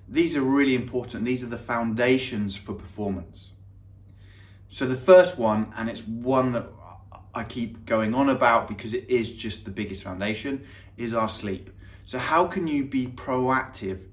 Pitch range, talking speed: 100-125 Hz, 165 wpm